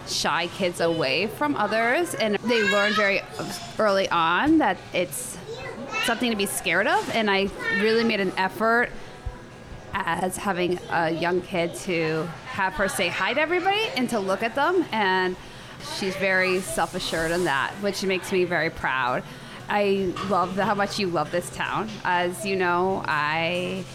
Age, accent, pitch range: 20-39, American, 170-205 Hz